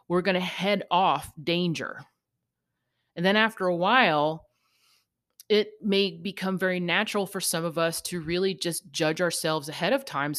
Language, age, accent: English, 30-49, American